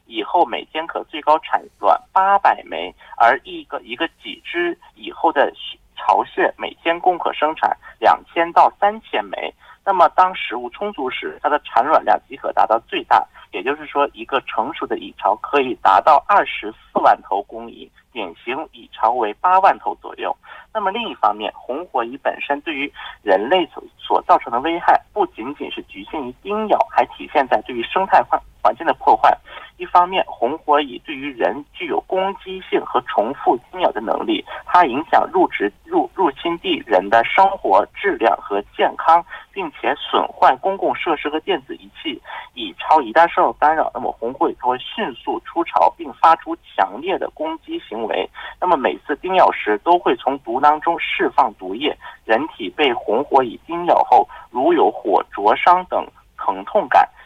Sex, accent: male, Chinese